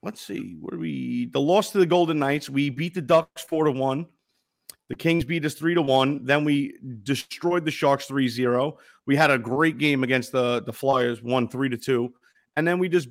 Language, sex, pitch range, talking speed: English, male, 135-170 Hz, 195 wpm